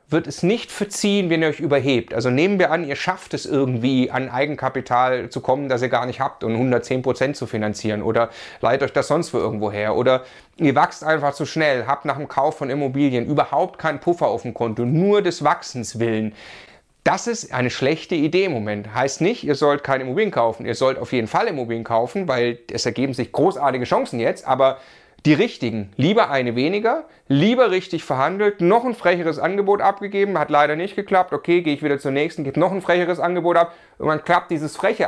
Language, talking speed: German, 210 wpm